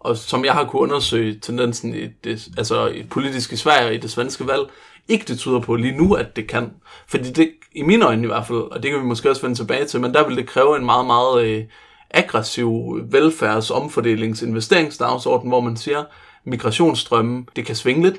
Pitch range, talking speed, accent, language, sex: 115-170 Hz, 210 wpm, native, Danish, male